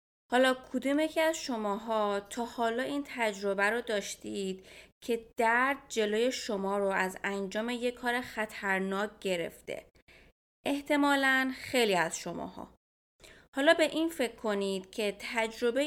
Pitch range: 200-255 Hz